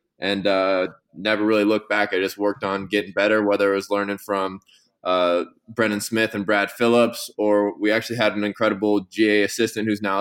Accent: American